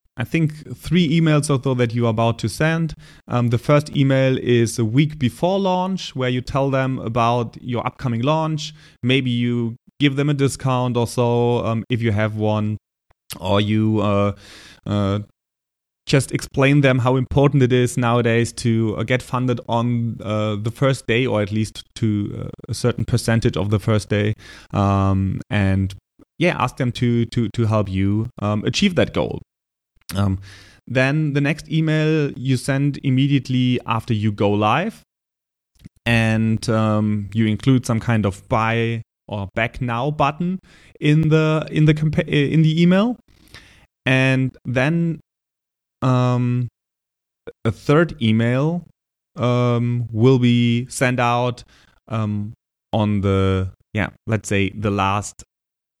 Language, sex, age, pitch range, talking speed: English, male, 30-49, 110-135 Hz, 150 wpm